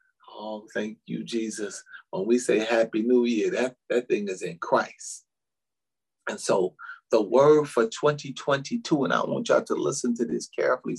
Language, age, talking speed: English, 40-59, 170 wpm